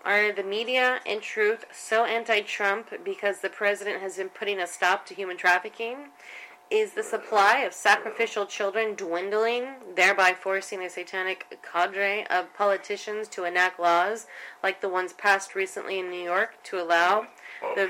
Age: 30-49